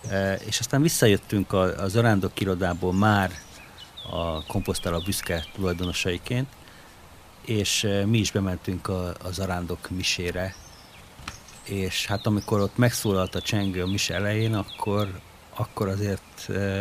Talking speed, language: 115 wpm, Hungarian